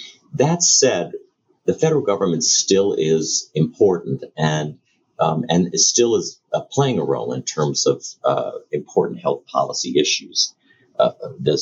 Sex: male